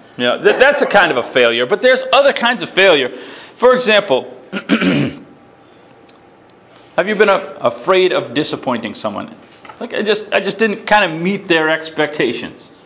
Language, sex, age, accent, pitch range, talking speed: English, male, 40-59, American, 140-230 Hz, 175 wpm